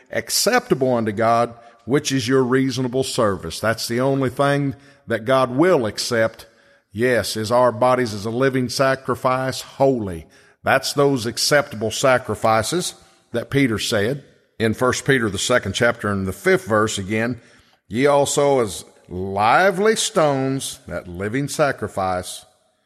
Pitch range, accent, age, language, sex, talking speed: 110-145 Hz, American, 50-69, English, male, 135 wpm